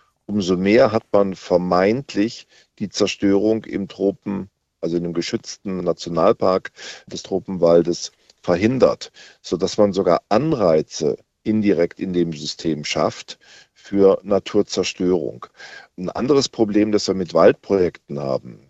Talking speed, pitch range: 115 wpm, 85-100 Hz